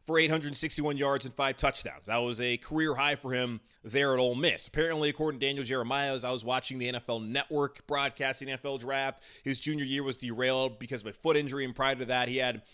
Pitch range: 125-165 Hz